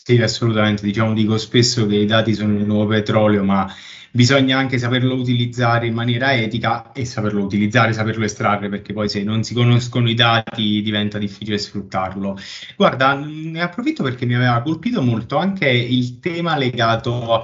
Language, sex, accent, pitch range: Italian, male, native, 105-125 Hz